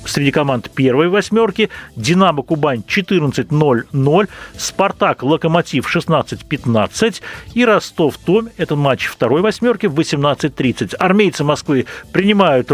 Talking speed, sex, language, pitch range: 95 wpm, male, Russian, 125-180 Hz